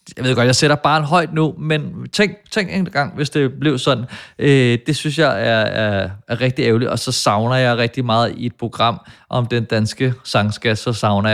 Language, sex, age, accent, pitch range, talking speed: English, male, 20-39, Danish, 110-140 Hz, 215 wpm